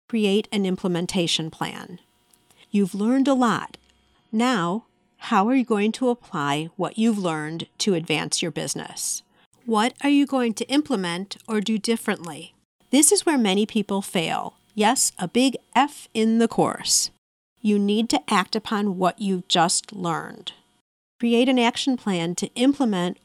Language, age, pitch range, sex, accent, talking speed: English, 50-69, 185-235 Hz, female, American, 150 wpm